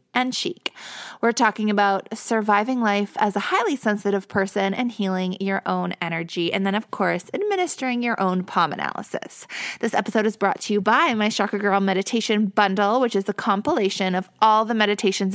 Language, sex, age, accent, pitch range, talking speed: English, female, 20-39, American, 190-230 Hz, 180 wpm